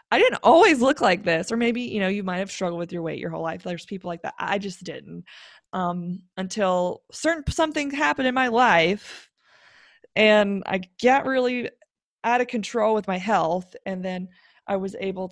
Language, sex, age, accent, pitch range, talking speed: English, female, 20-39, American, 180-225 Hz, 195 wpm